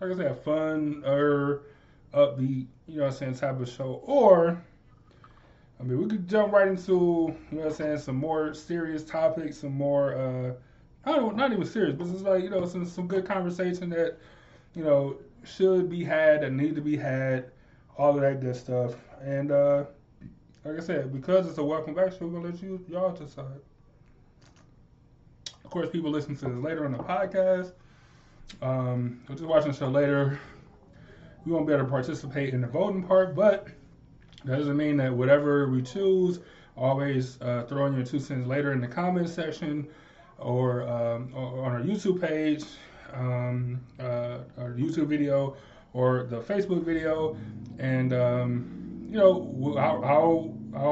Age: 20-39